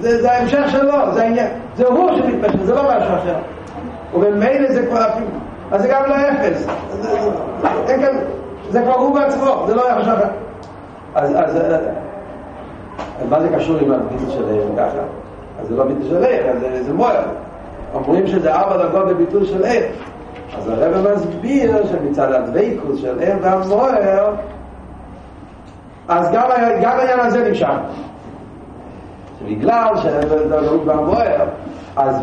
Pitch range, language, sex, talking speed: 195-250 Hz, Hebrew, male, 130 wpm